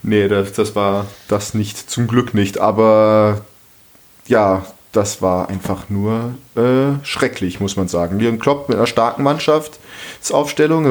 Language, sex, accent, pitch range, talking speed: German, male, German, 105-130 Hz, 145 wpm